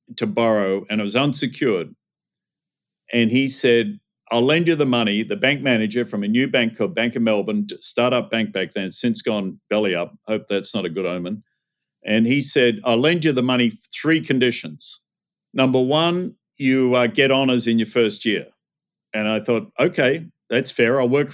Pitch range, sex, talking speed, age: 115-145 Hz, male, 190 wpm, 50-69